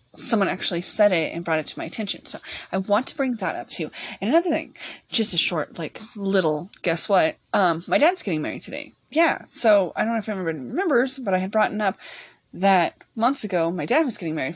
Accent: American